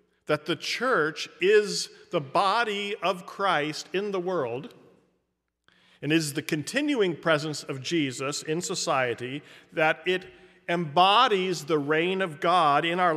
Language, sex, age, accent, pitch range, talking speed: English, male, 40-59, American, 145-190 Hz, 130 wpm